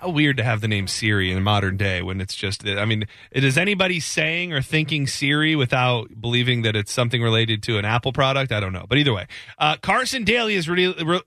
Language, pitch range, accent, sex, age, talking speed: English, 140-195 Hz, American, male, 30-49, 240 wpm